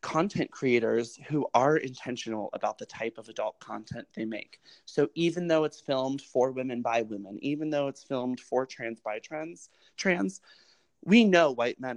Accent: American